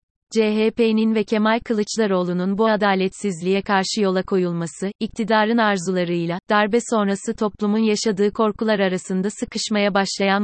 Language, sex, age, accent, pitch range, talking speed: Turkish, female, 30-49, native, 195-220 Hz, 110 wpm